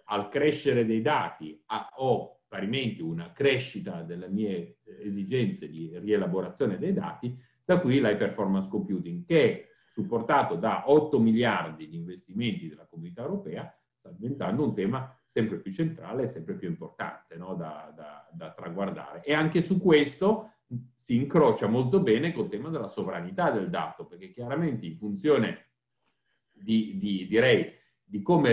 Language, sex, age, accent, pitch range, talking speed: Italian, male, 50-69, native, 100-150 Hz, 145 wpm